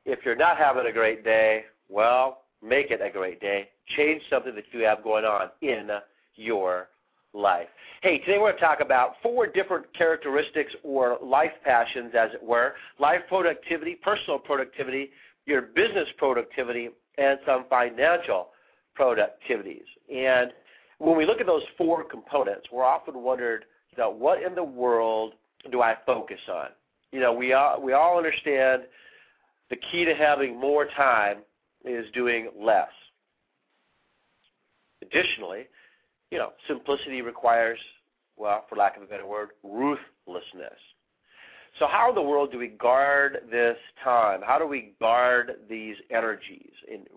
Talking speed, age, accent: 150 wpm, 50-69, American